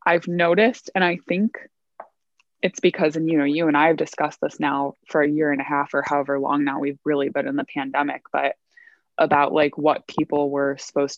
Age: 20-39